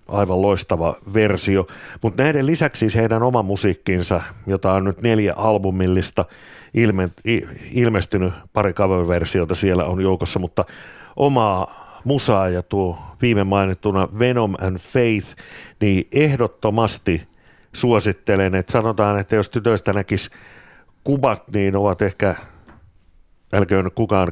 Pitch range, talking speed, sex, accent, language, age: 95-115 Hz, 115 wpm, male, native, Finnish, 60-79